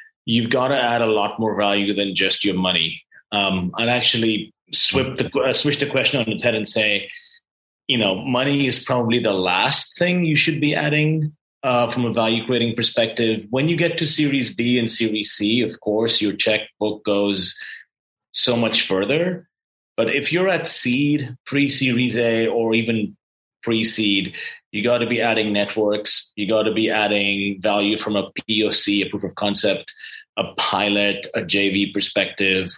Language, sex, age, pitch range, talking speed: English, male, 30-49, 105-140 Hz, 170 wpm